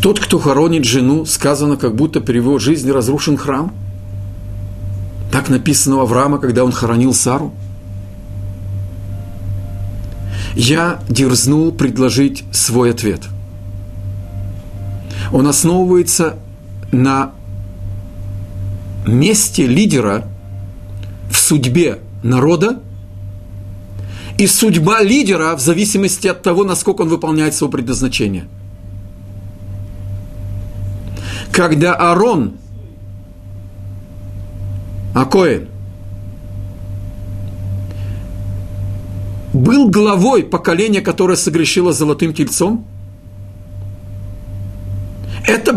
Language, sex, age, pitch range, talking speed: Russian, male, 50-69, 100-160 Hz, 75 wpm